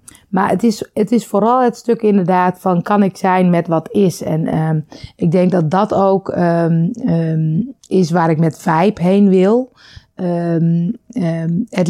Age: 30-49